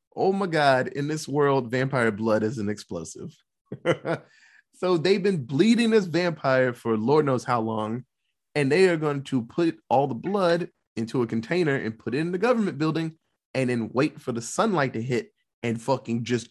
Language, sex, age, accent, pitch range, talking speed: English, male, 20-39, American, 115-170 Hz, 190 wpm